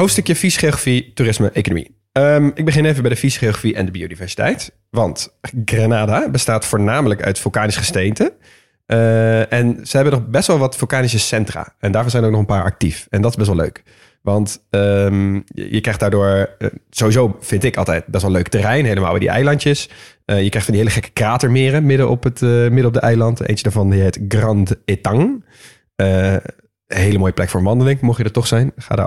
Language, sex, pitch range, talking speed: Dutch, male, 100-125 Hz, 210 wpm